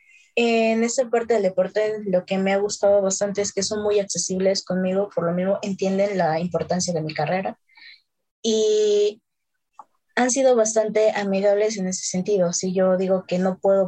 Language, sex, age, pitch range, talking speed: Spanish, female, 20-39, 180-210 Hz, 175 wpm